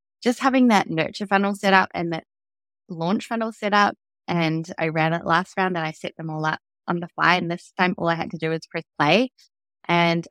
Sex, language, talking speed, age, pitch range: female, English, 235 wpm, 20-39, 160-185 Hz